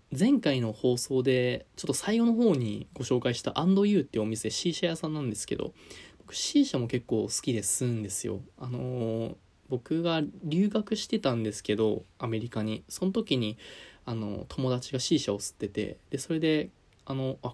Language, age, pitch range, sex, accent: Japanese, 20-39, 110-150 Hz, male, native